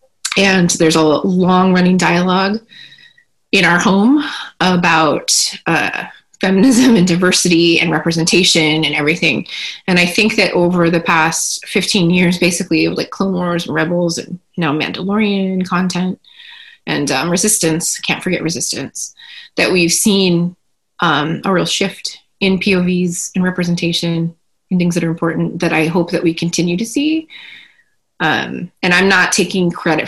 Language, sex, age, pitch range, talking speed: English, female, 20-39, 165-190 Hz, 145 wpm